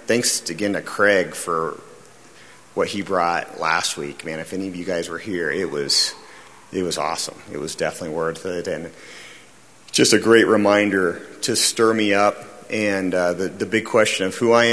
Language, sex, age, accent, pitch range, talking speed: English, male, 40-59, American, 90-110 Hz, 190 wpm